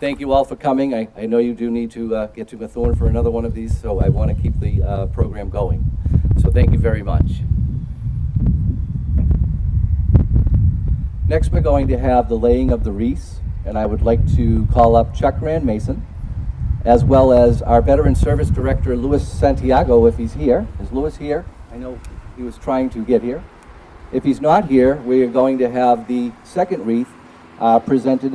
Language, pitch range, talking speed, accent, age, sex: English, 85-125 Hz, 195 wpm, American, 40-59, male